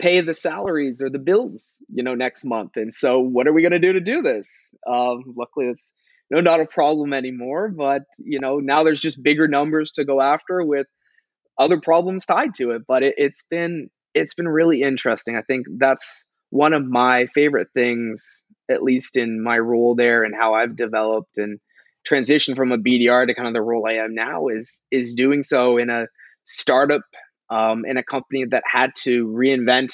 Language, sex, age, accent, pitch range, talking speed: English, male, 20-39, American, 115-140 Hz, 200 wpm